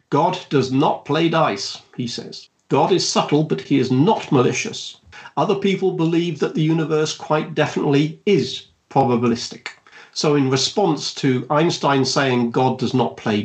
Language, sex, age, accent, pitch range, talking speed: English, male, 50-69, British, 130-170 Hz, 155 wpm